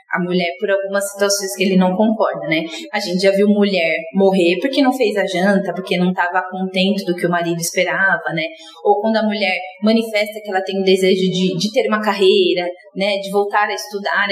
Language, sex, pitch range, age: Portuguese, female, 185-215 Hz, 20-39